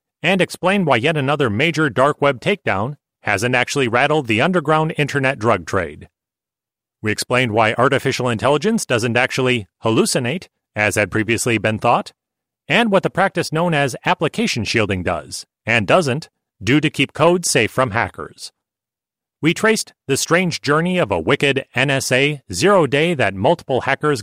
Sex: male